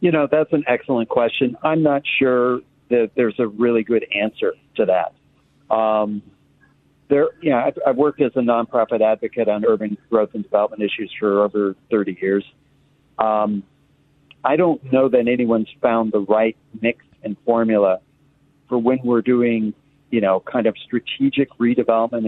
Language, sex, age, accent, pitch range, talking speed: English, male, 40-59, American, 105-135 Hz, 160 wpm